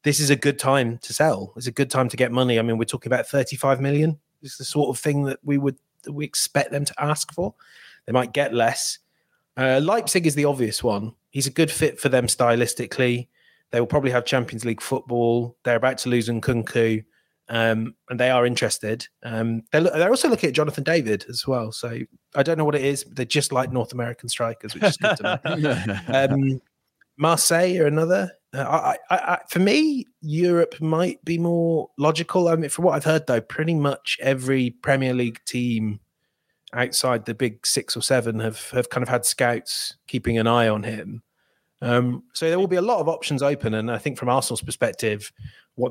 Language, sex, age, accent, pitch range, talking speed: English, male, 30-49, British, 115-145 Hz, 210 wpm